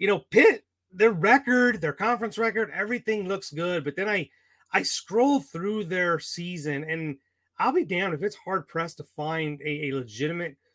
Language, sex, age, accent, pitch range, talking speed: English, male, 30-49, American, 150-185 Hz, 175 wpm